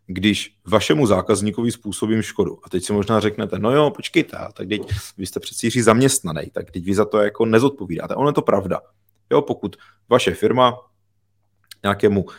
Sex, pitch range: male, 95-105 Hz